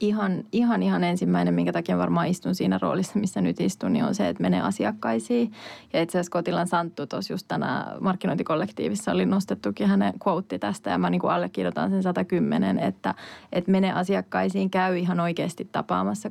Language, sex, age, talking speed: Finnish, female, 20-39, 175 wpm